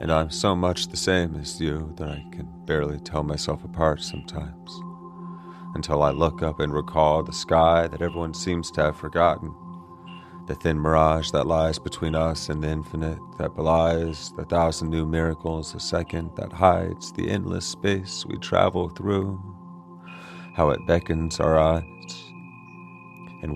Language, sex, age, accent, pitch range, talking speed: English, male, 30-49, American, 80-95 Hz, 160 wpm